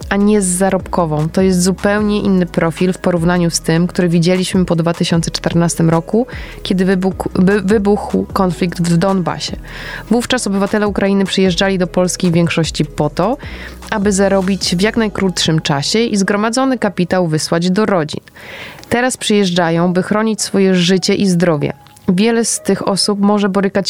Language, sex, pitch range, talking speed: Polish, female, 175-205 Hz, 150 wpm